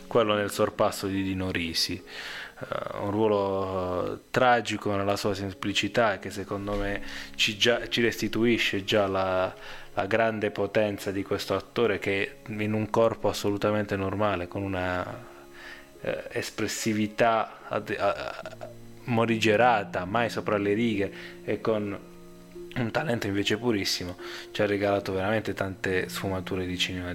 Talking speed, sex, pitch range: 120 wpm, male, 95-110 Hz